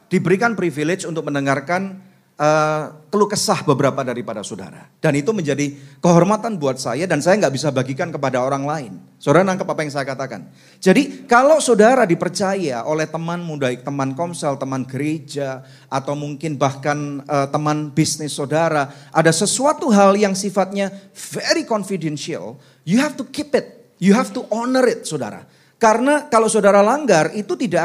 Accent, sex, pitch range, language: native, male, 150-205 Hz, Indonesian